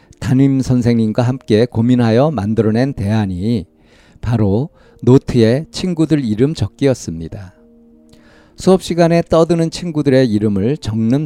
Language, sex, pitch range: Korean, male, 105-145 Hz